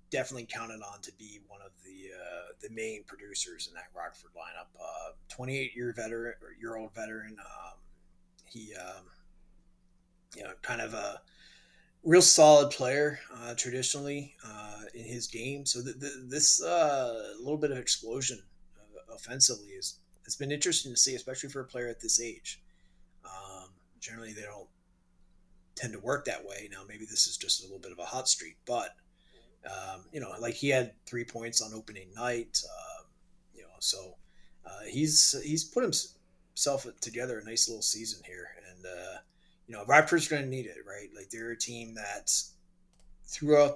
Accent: American